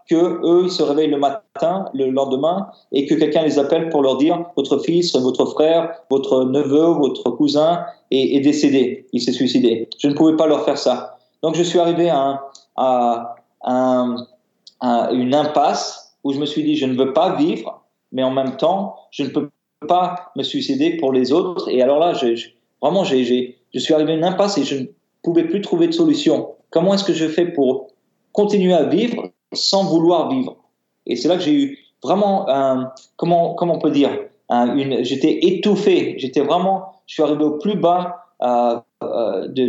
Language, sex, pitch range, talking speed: French, male, 135-185 Hz, 195 wpm